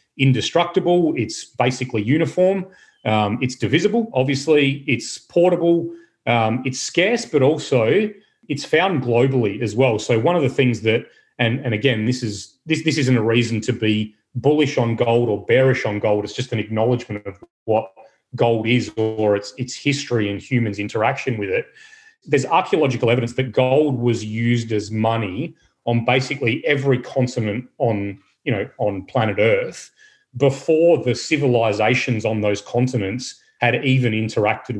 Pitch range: 110-135 Hz